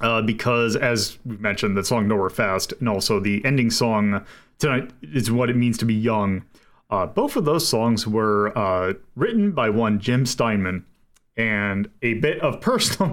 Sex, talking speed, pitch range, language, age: male, 180 wpm, 110-150 Hz, English, 30-49